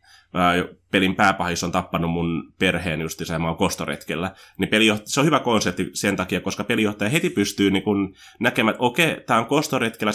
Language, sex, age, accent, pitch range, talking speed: Finnish, male, 20-39, native, 90-105 Hz, 175 wpm